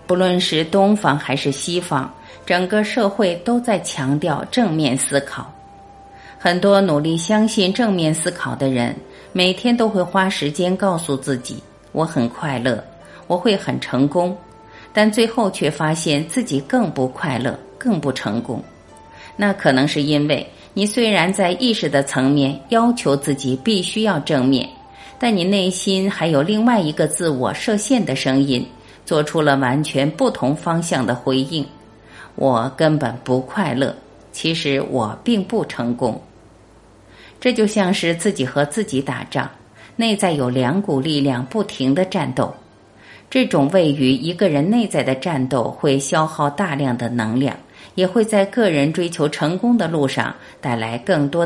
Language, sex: Chinese, female